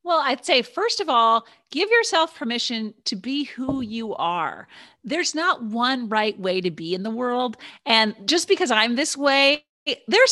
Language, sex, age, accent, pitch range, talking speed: English, female, 40-59, American, 220-310 Hz, 180 wpm